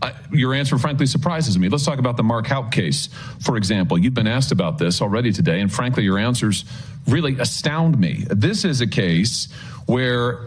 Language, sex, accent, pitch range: English, male, American, 125-160 Hz